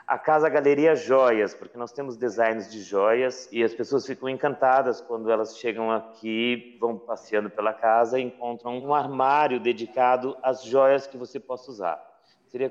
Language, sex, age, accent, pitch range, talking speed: Portuguese, male, 30-49, Brazilian, 130-170 Hz, 165 wpm